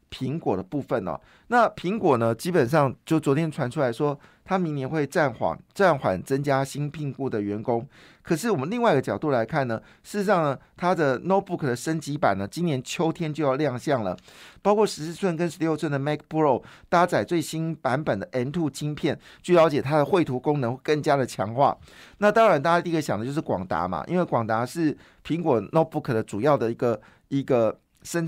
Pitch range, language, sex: 130-165 Hz, Chinese, male